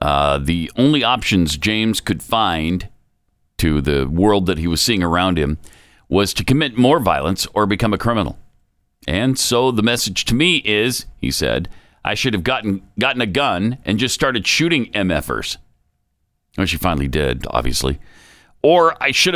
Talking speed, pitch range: 165 wpm, 85-120 Hz